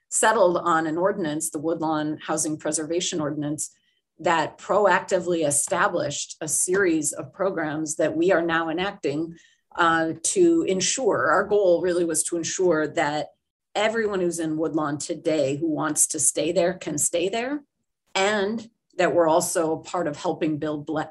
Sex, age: female, 40-59